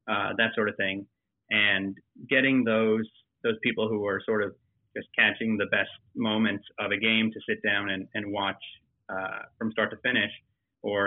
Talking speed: 185 wpm